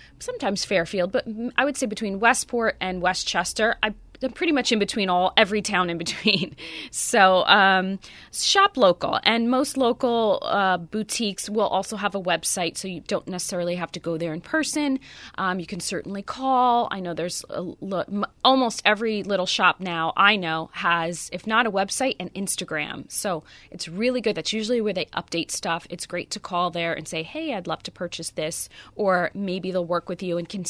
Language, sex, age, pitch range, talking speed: English, female, 20-39, 175-230 Hz, 195 wpm